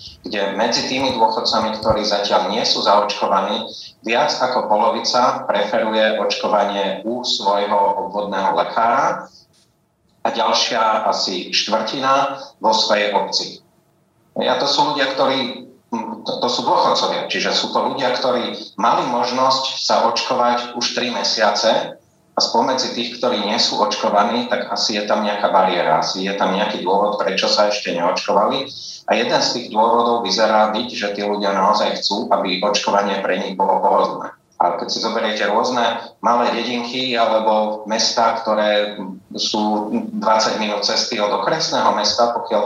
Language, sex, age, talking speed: Slovak, male, 30-49, 145 wpm